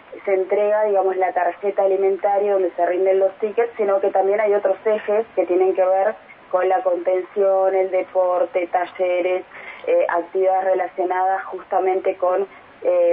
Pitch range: 180-205 Hz